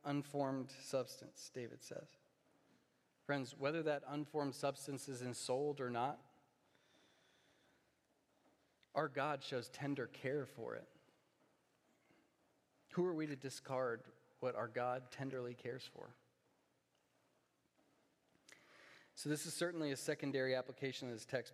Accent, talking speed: American, 115 wpm